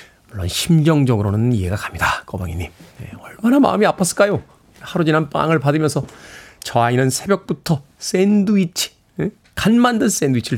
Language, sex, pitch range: Korean, male, 130-180 Hz